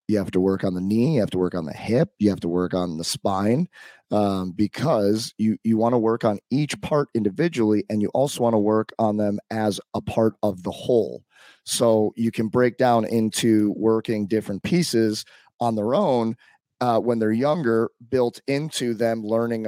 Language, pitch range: English, 105-120 Hz